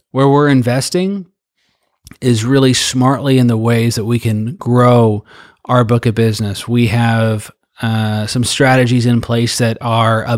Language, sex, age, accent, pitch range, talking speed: English, male, 30-49, American, 115-130 Hz, 155 wpm